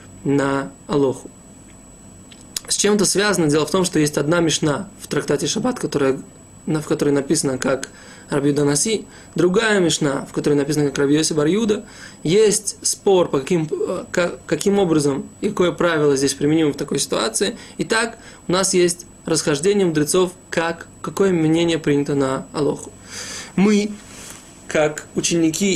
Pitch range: 145-190 Hz